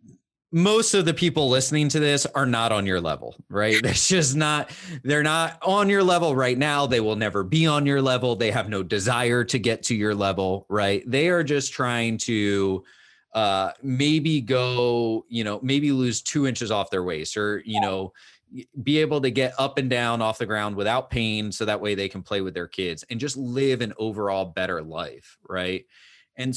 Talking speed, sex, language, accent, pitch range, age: 205 wpm, male, English, American, 100-130 Hz, 30-49